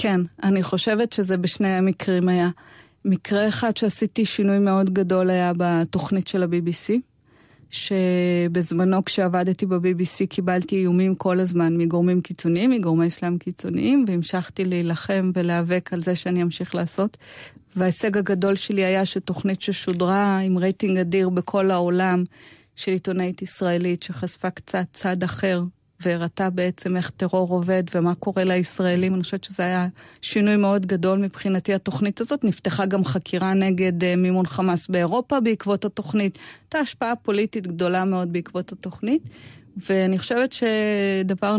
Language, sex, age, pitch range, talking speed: Hebrew, female, 30-49, 180-205 Hz, 135 wpm